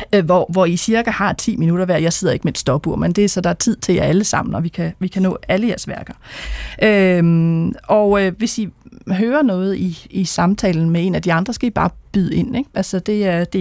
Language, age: Danish, 30-49